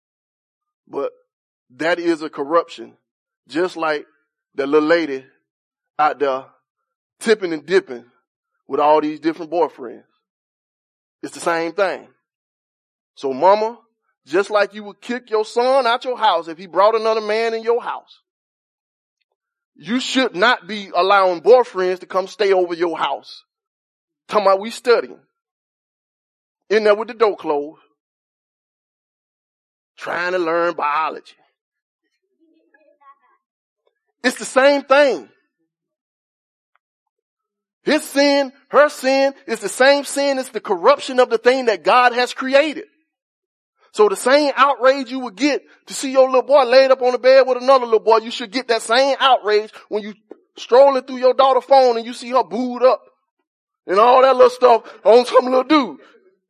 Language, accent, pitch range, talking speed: English, American, 195-280 Hz, 150 wpm